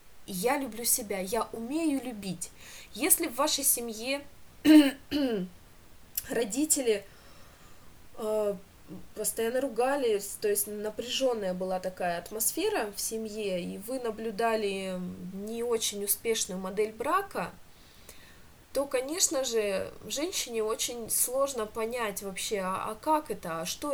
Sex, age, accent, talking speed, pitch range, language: female, 20-39, native, 105 wpm, 200-260 Hz, Russian